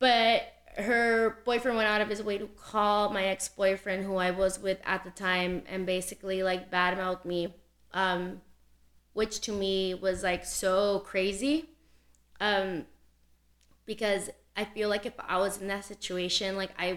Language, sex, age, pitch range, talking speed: English, female, 20-39, 180-205 Hz, 160 wpm